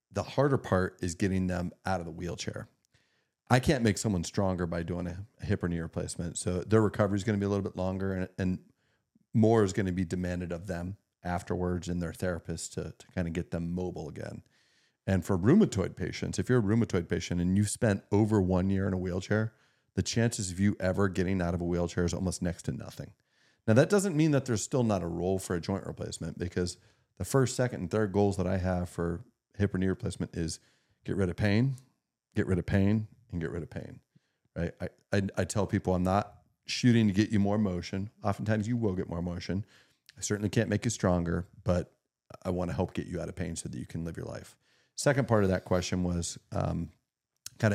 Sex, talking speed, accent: male, 225 wpm, American